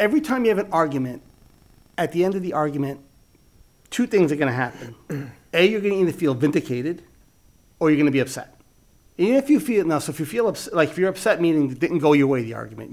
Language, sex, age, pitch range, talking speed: English, male, 30-49, 140-185 Hz, 245 wpm